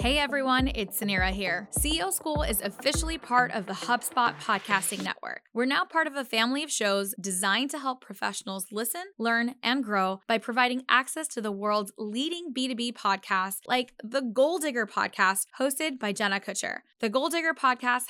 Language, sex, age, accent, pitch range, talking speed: English, female, 10-29, American, 215-275 Hz, 175 wpm